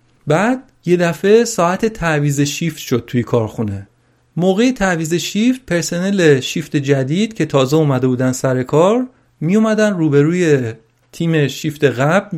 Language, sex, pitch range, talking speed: Persian, male, 130-185 Hz, 130 wpm